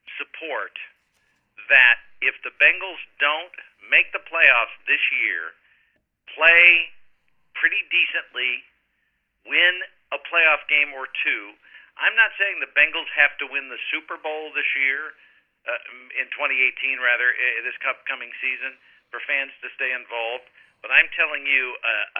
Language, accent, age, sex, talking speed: English, American, 50-69, male, 135 wpm